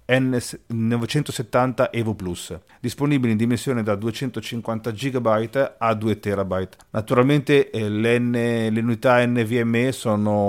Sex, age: male, 40-59